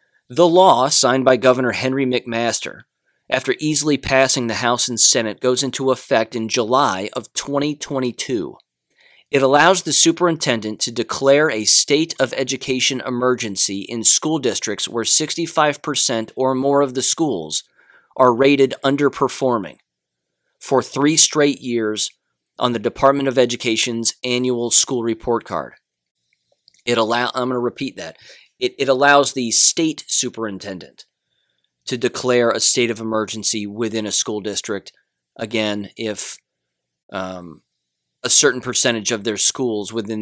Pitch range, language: 110-140 Hz, English